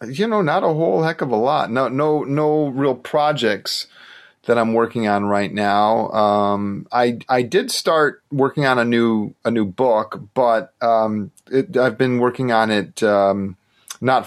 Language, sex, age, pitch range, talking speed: English, male, 30-49, 100-125 Hz, 175 wpm